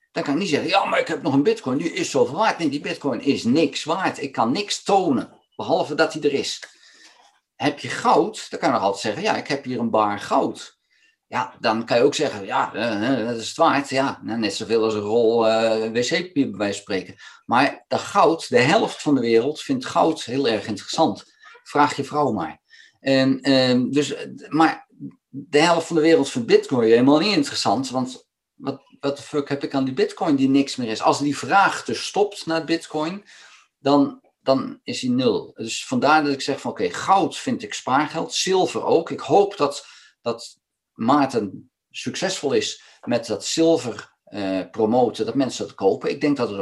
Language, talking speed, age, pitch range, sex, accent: Dutch, 205 wpm, 50-69, 120-165 Hz, male, Dutch